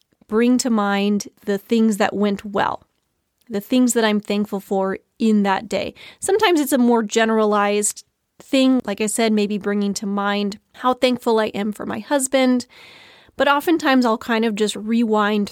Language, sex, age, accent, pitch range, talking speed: English, female, 30-49, American, 200-250 Hz, 170 wpm